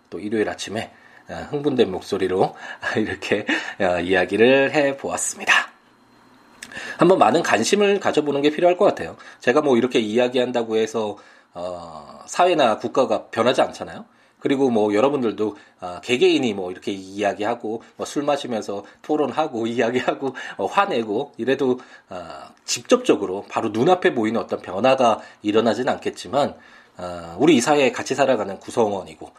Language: Korean